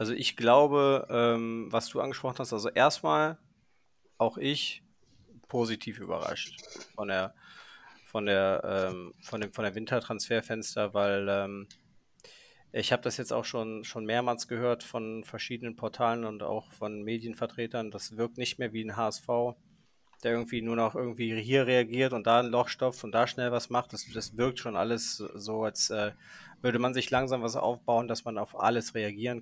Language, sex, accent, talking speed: German, male, German, 160 wpm